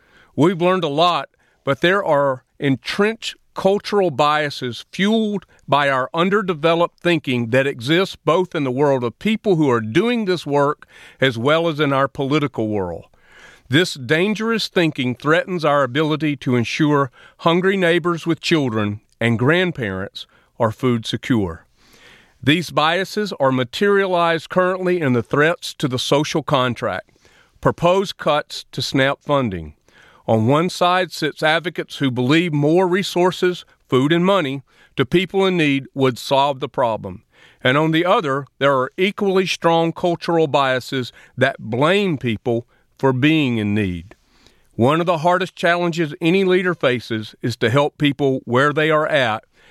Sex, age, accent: male, 40-59, American